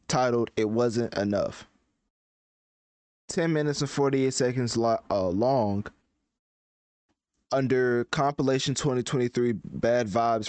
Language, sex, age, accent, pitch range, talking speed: English, male, 20-39, American, 110-130 Hz, 90 wpm